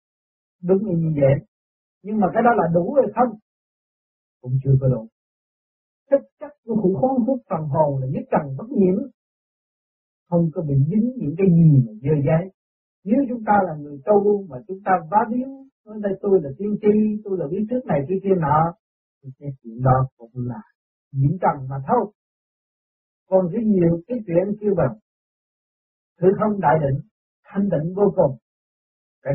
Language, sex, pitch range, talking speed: Vietnamese, male, 140-205 Hz, 180 wpm